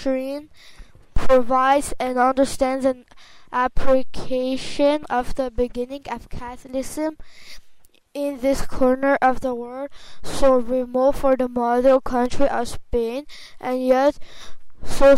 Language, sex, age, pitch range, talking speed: English, female, 10-29, 250-275 Hz, 105 wpm